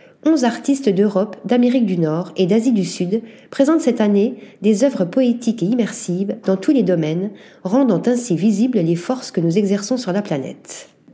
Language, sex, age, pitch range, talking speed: French, female, 40-59, 180-240 Hz, 180 wpm